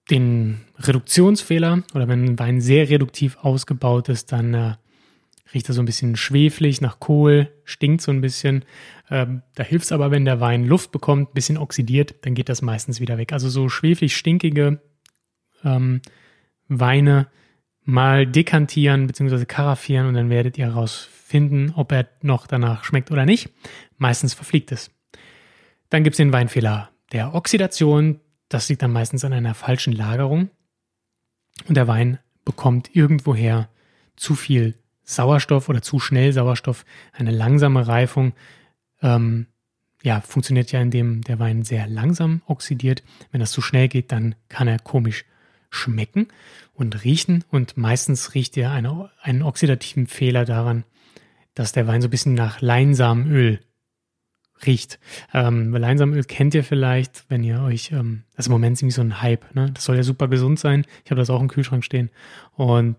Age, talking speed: 30-49, 165 wpm